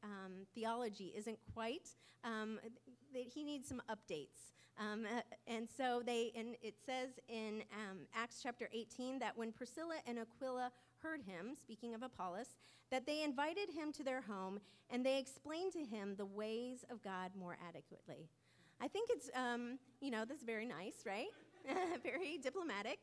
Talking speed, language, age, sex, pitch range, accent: 165 wpm, English, 30-49, female, 200-260 Hz, American